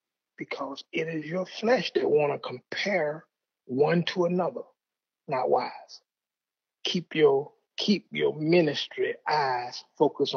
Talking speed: 120 wpm